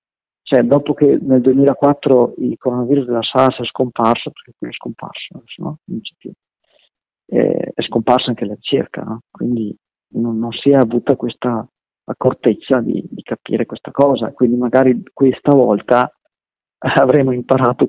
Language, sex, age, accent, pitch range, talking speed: Italian, male, 40-59, native, 120-140 Hz, 150 wpm